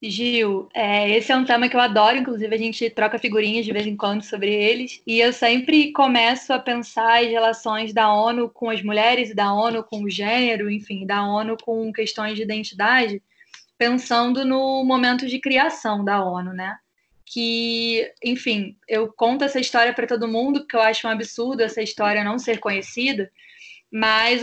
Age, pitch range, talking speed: 20-39, 215-250 Hz, 180 wpm